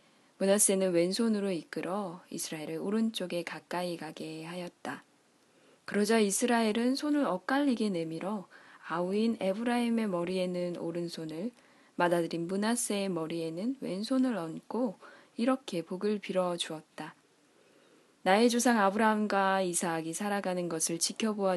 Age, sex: 20-39, female